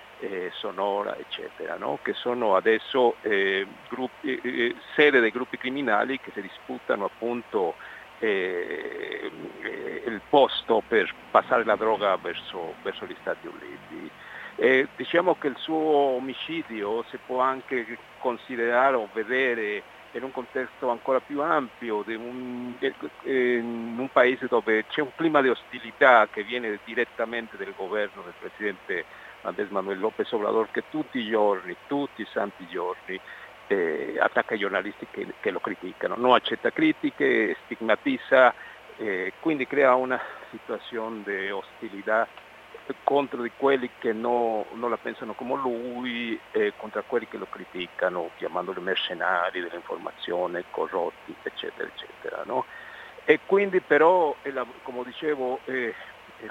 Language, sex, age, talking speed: Italian, male, 60-79, 135 wpm